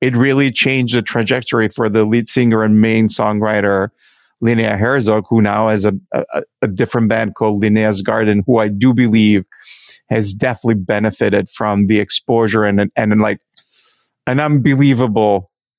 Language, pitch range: English, 105-125 Hz